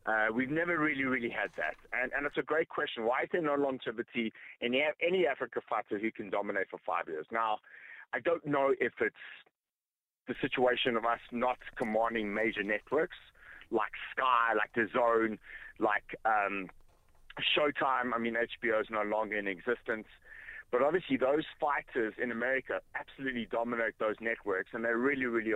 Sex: male